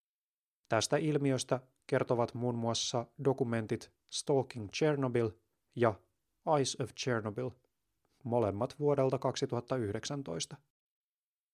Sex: male